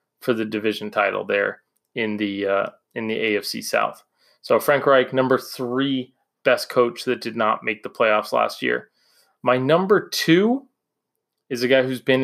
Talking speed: 170 wpm